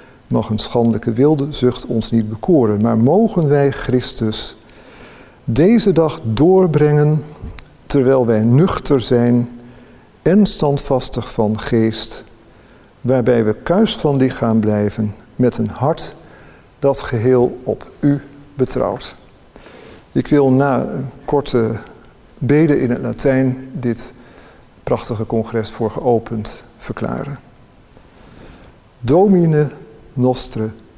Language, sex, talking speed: Dutch, male, 105 wpm